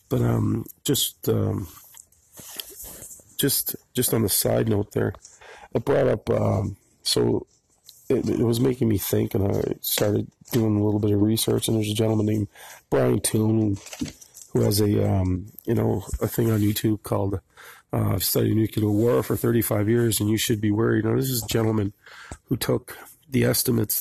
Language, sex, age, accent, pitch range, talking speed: English, male, 40-59, American, 100-115 Hz, 180 wpm